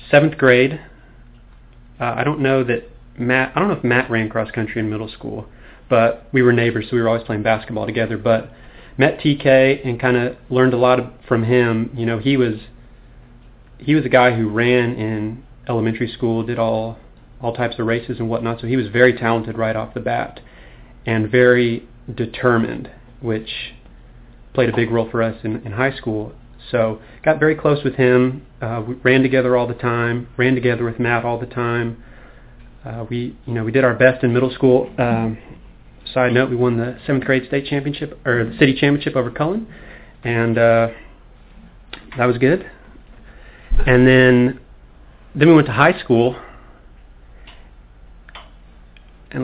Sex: male